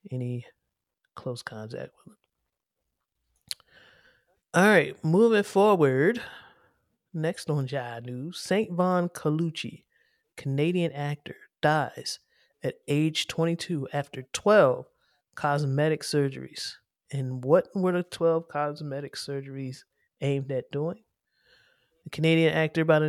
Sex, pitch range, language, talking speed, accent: male, 135-165 Hz, English, 100 wpm, American